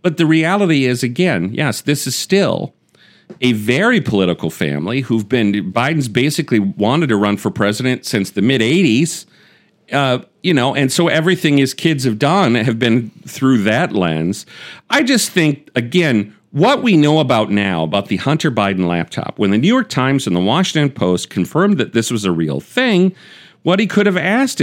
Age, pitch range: 40-59, 110-160 Hz